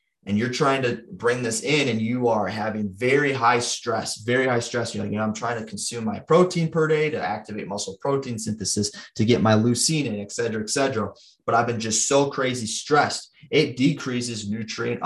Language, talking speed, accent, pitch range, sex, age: English, 205 wpm, American, 110-130 Hz, male, 30-49